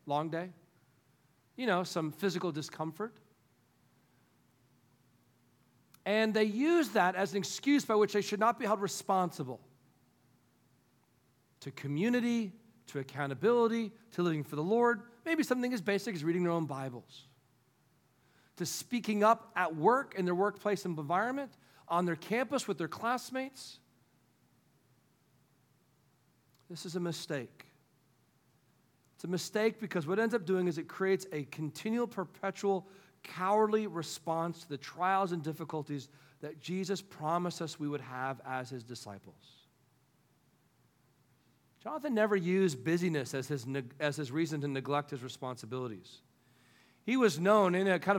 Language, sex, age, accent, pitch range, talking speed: English, male, 40-59, American, 135-200 Hz, 135 wpm